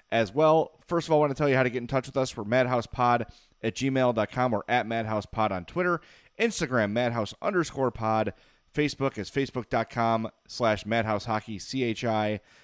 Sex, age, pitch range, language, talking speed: male, 30-49, 110-140 Hz, English, 185 wpm